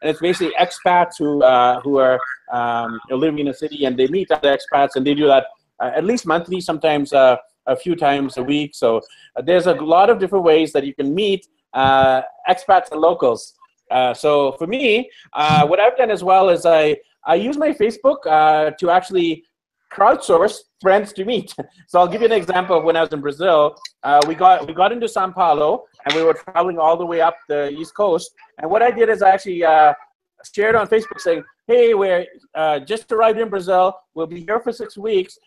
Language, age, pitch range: English, 30-49, 155-220 Hz